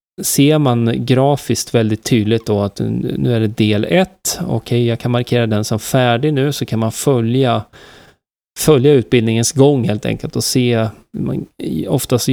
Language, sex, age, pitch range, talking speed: Swedish, male, 30-49, 110-135 Hz, 165 wpm